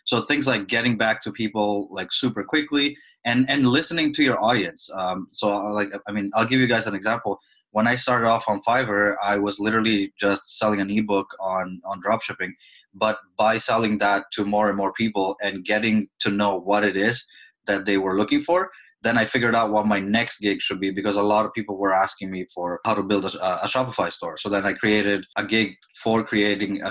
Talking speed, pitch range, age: 220 wpm, 100-115 Hz, 20-39